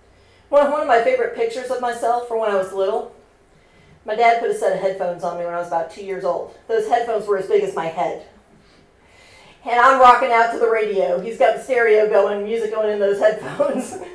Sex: female